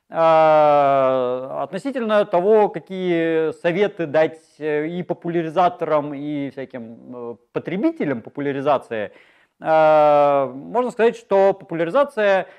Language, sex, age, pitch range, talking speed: Russian, male, 30-49, 145-200 Hz, 70 wpm